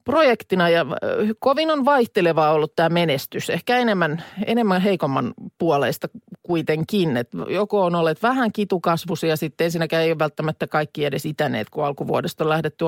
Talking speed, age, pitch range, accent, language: 145 wpm, 30-49, 155-200 Hz, native, Finnish